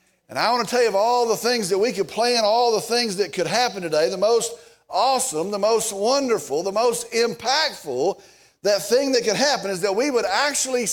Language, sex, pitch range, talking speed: English, male, 195-260 Hz, 220 wpm